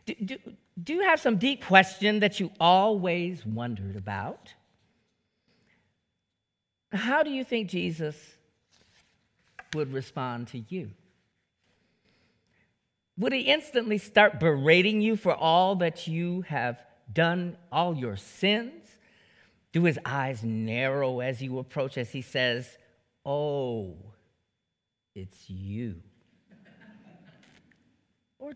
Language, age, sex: English, 50-69, male